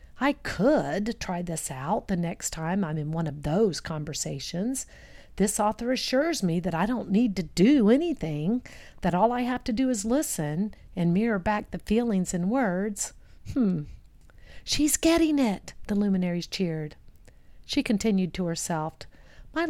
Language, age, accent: English, 50-69, American